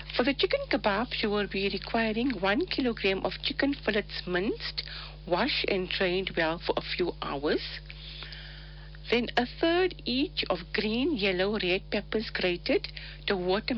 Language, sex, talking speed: English, female, 150 wpm